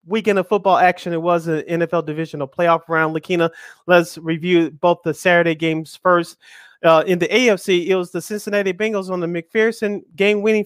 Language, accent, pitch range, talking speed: English, American, 165-215 Hz, 180 wpm